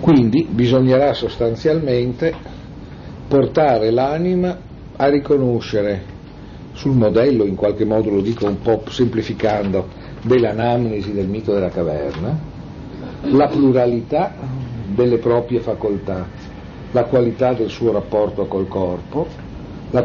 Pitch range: 105-135 Hz